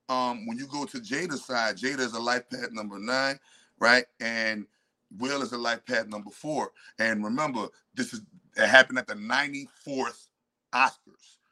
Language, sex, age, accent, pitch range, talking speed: English, male, 30-49, American, 125-145 Hz, 170 wpm